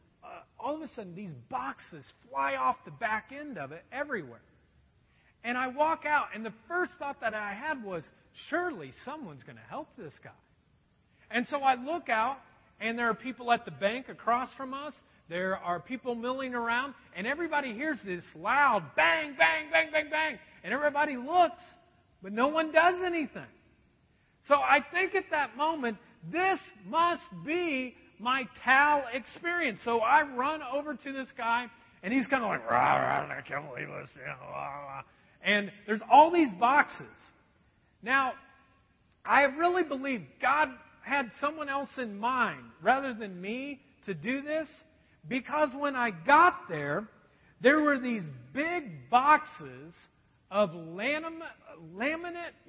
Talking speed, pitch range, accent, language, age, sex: 150 wpm, 215-300 Hz, American, English, 40-59, male